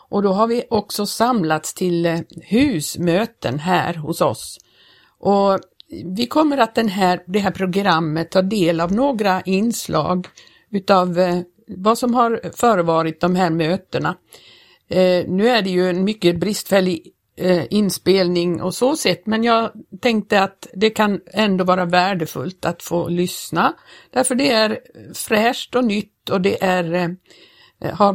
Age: 60-79